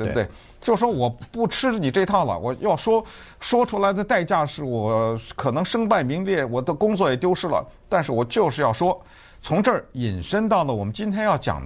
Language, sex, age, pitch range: Chinese, male, 50-69, 105-175 Hz